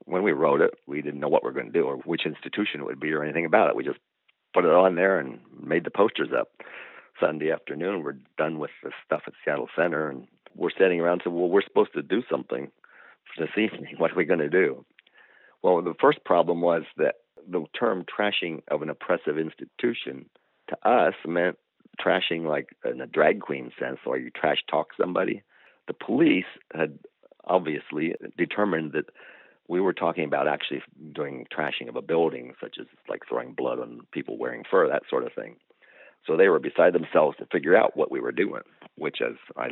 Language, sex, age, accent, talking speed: English, male, 50-69, American, 205 wpm